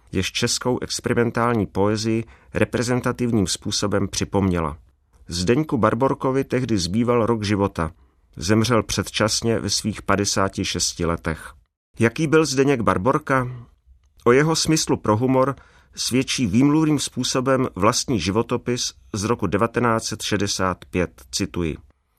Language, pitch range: Czech, 90-125 Hz